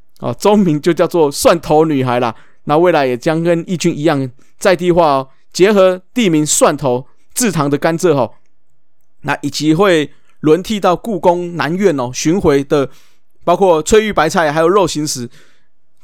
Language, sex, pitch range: Chinese, male, 145-190 Hz